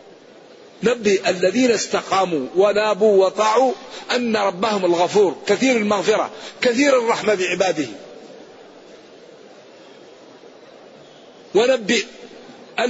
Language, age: Arabic, 50-69